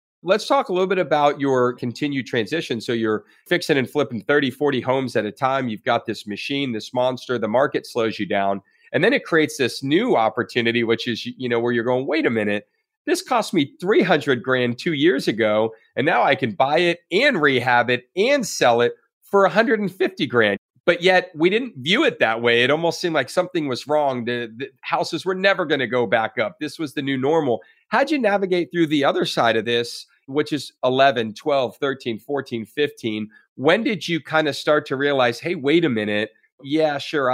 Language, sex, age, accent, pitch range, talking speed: English, male, 40-59, American, 115-155 Hz, 210 wpm